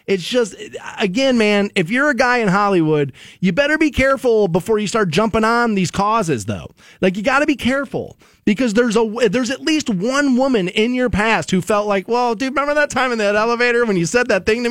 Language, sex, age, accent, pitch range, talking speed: English, male, 30-49, American, 200-265 Hz, 225 wpm